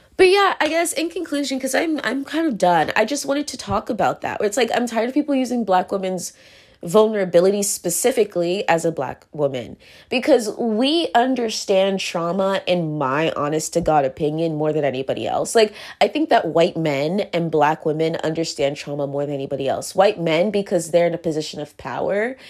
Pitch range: 170-225 Hz